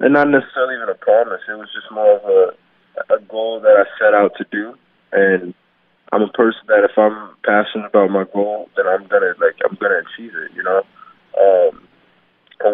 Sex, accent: male, American